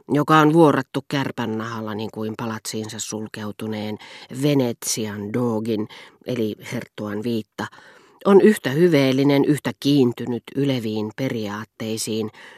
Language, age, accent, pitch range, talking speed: Finnish, 40-59, native, 115-140 Hz, 95 wpm